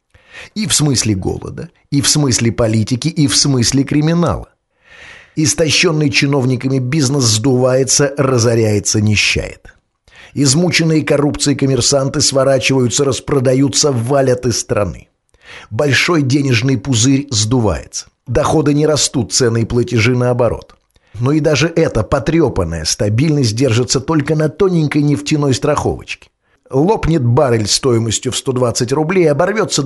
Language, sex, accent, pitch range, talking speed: Russian, male, native, 115-150 Hz, 115 wpm